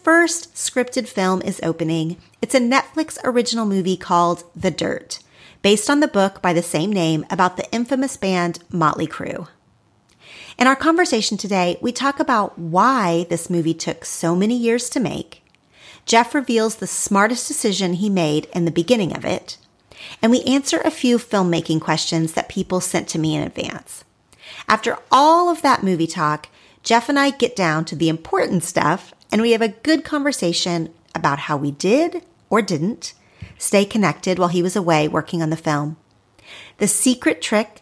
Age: 40-59